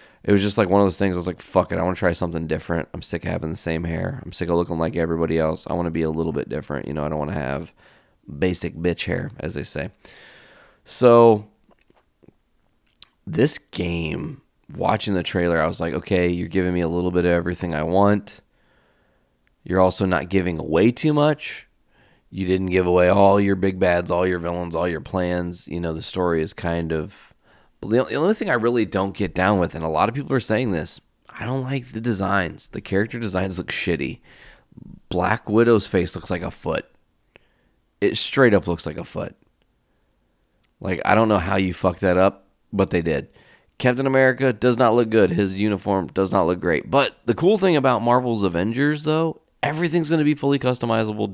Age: 20-39